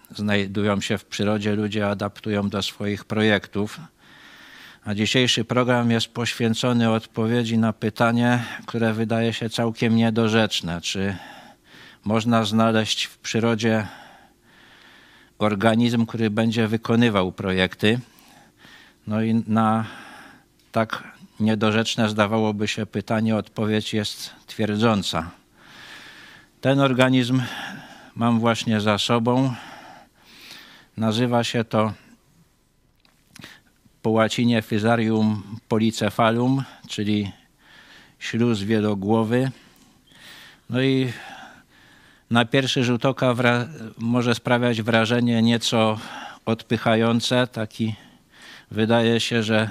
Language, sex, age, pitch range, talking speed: Polish, male, 50-69, 110-120 Hz, 90 wpm